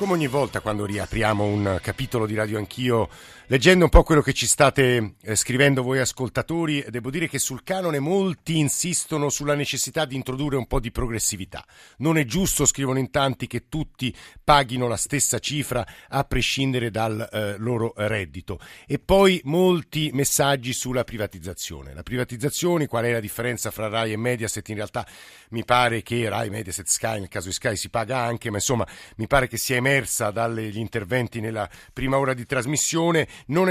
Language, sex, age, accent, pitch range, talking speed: Italian, male, 50-69, native, 115-150 Hz, 180 wpm